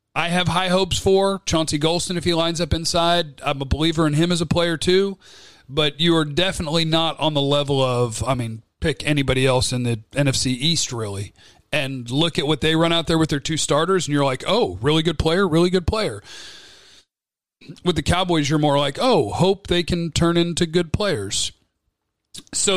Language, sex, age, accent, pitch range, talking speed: English, male, 40-59, American, 145-175 Hz, 205 wpm